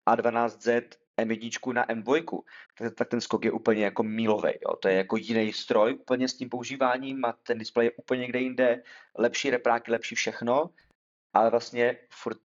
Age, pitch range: 30-49, 115-130 Hz